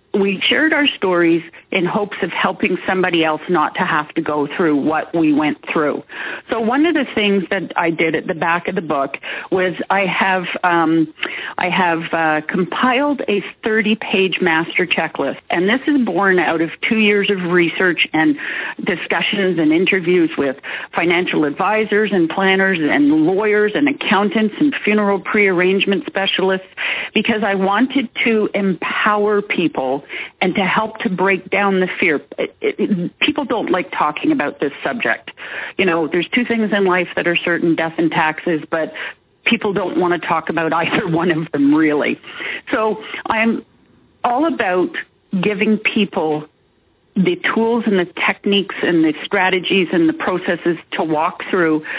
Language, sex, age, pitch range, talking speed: English, female, 40-59, 175-225 Hz, 160 wpm